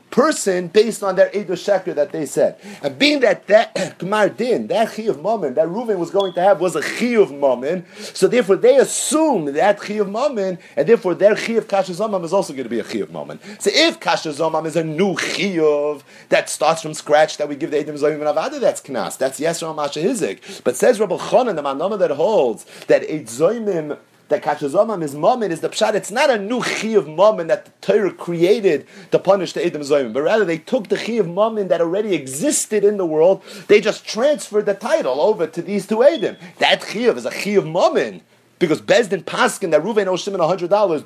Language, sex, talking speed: English, male, 220 wpm